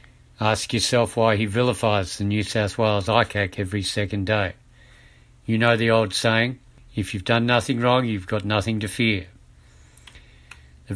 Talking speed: 160 wpm